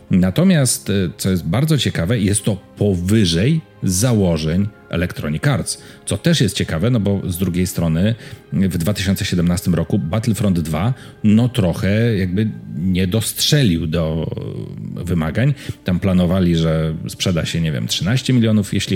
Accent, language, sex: native, Polish, male